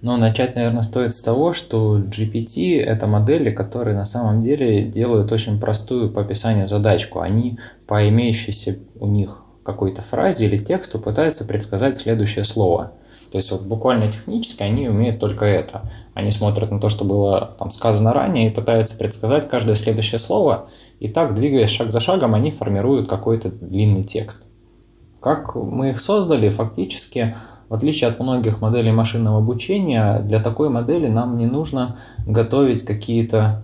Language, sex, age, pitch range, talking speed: Russian, male, 20-39, 100-120 Hz, 155 wpm